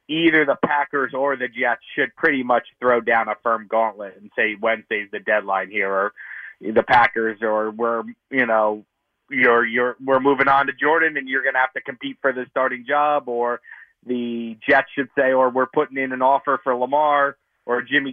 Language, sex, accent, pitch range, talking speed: English, male, American, 115-135 Hz, 200 wpm